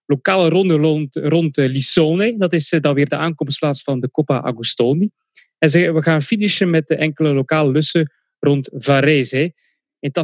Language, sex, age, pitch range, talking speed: English, male, 30-49, 135-165 Hz, 165 wpm